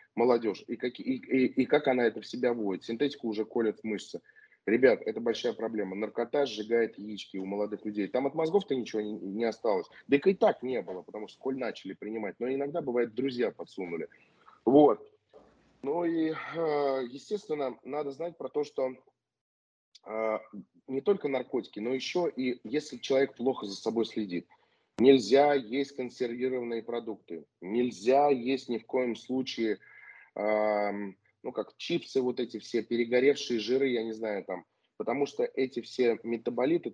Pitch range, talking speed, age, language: 115-140 Hz, 150 wpm, 20-39, Russian